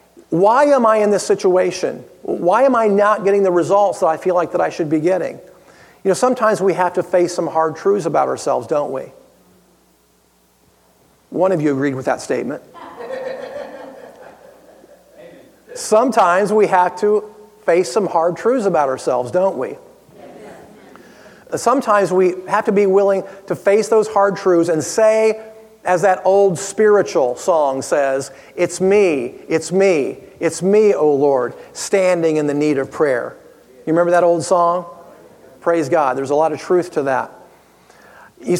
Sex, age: male, 40-59